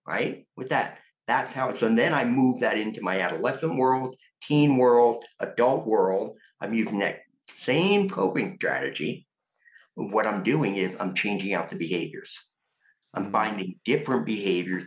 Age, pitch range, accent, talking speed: 60-79, 100-145 Hz, American, 155 wpm